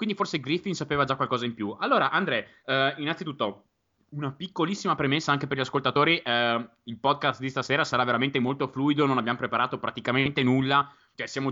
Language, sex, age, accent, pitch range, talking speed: Italian, male, 20-39, native, 110-140 Hz, 180 wpm